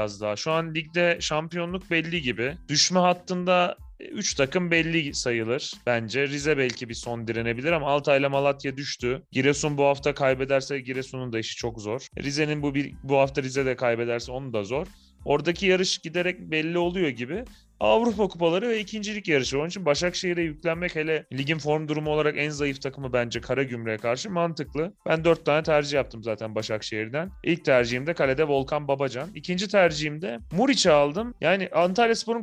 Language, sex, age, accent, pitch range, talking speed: Turkish, male, 30-49, native, 130-170 Hz, 165 wpm